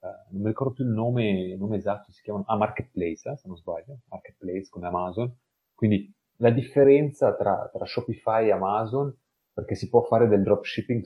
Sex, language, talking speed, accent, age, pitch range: male, Italian, 190 wpm, native, 30-49, 90-110 Hz